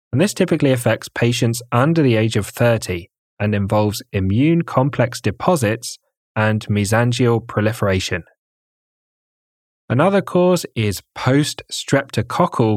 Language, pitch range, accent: English, 105-140 Hz, British